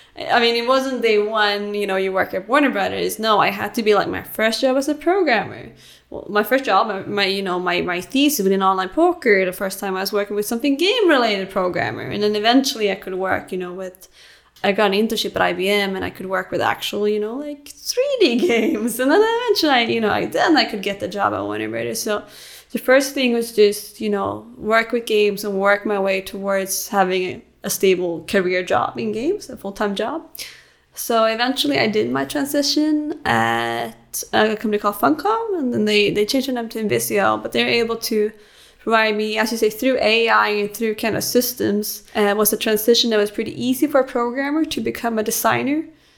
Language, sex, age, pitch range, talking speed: English, female, 20-39, 195-250 Hz, 220 wpm